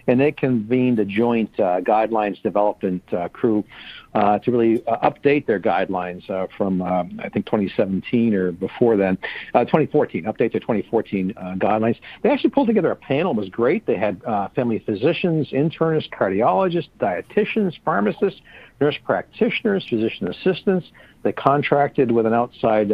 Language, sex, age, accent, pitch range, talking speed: English, male, 60-79, American, 105-145 Hz, 155 wpm